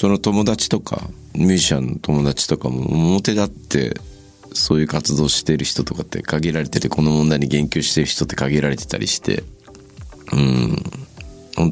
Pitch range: 70-85 Hz